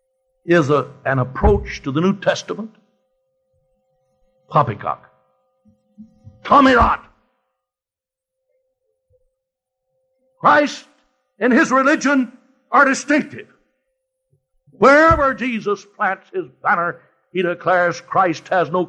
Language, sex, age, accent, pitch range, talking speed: English, male, 60-79, American, 155-260 Hz, 85 wpm